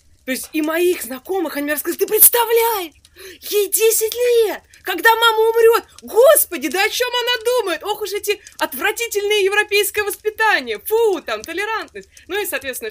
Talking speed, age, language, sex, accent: 160 wpm, 20-39, Russian, female, native